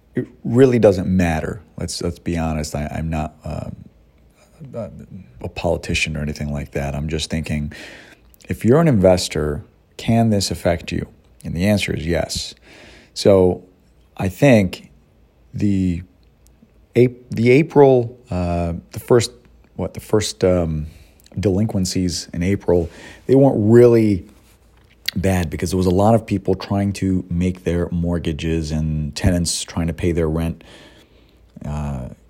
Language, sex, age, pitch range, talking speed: English, male, 40-59, 80-105 Hz, 145 wpm